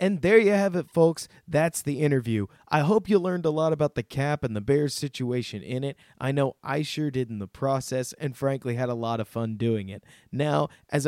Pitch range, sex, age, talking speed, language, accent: 120-155 Hz, male, 20-39, 235 wpm, English, American